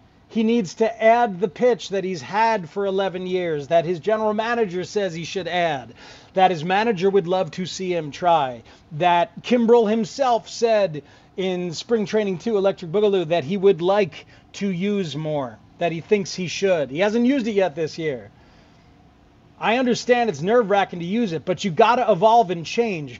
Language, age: English, 40-59